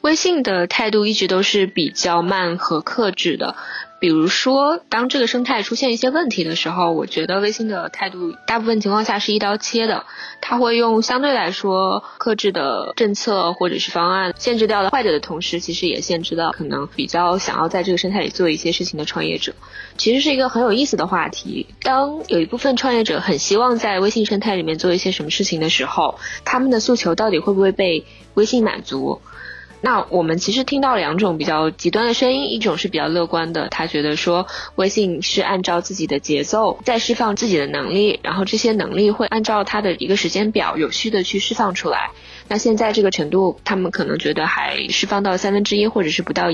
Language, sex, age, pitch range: Chinese, female, 10-29, 175-230 Hz